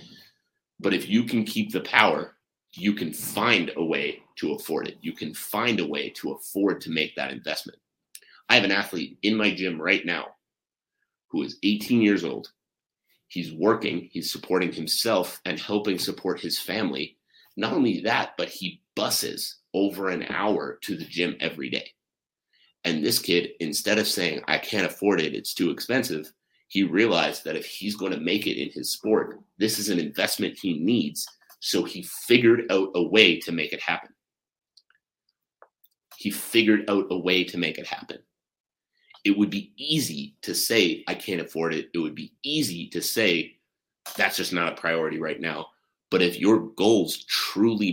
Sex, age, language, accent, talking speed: male, 30-49, English, American, 180 wpm